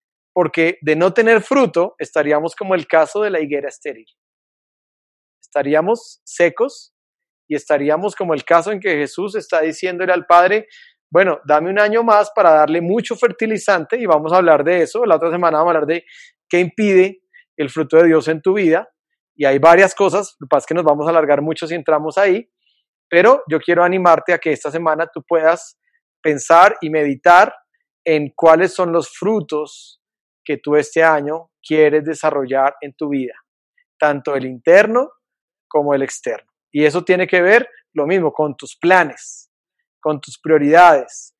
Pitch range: 155-200 Hz